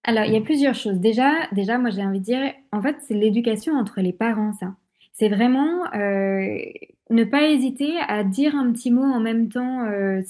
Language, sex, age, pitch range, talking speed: French, female, 20-39, 195-250 Hz, 210 wpm